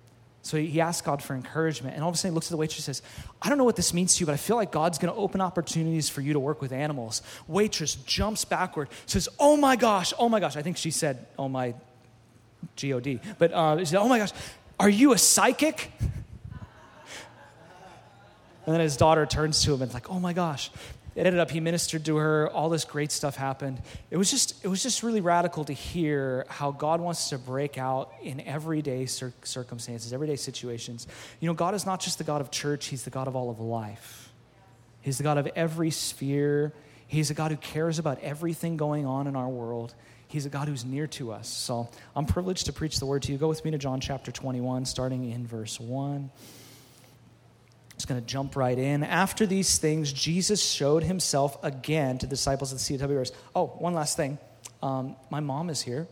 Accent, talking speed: American, 215 wpm